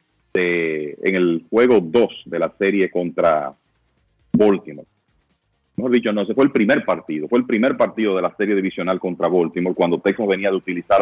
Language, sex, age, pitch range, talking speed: Spanish, male, 30-49, 95-115 Hz, 180 wpm